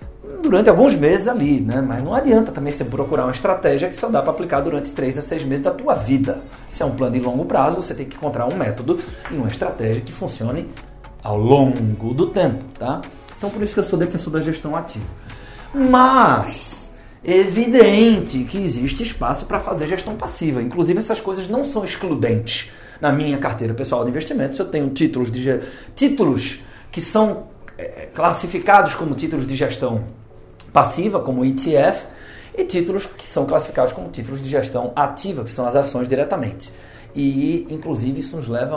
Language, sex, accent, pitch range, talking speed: Portuguese, male, Brazilian, 120-190 Hz, 180 wpm